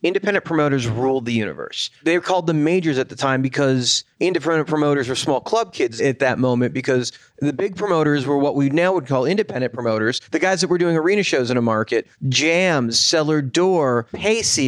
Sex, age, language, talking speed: male, 30-49, English, 195 wpm